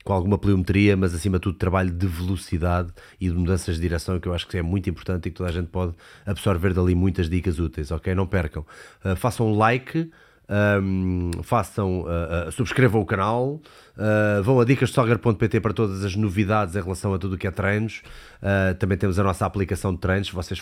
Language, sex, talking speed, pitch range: Portuguese, male, 210 wpm, 90-105 Hz